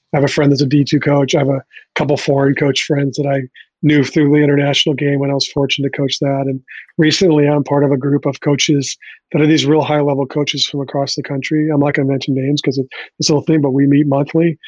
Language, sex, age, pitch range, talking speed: English, male, 40-59, 135-150 Hz, 260 wpm